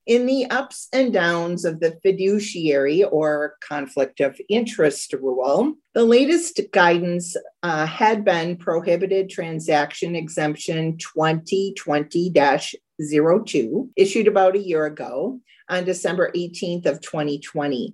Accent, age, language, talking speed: American, 40-59, English, 110 wpm